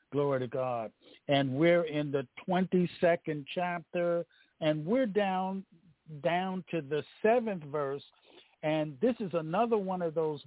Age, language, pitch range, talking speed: 50-69, English, 145-185 Hz, 140 wpm